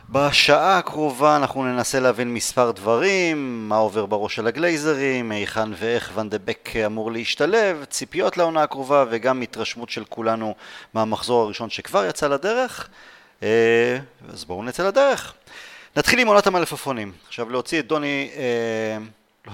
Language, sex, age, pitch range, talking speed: Hebrew, male, 30-49, 110-150 Hz, 130 wpm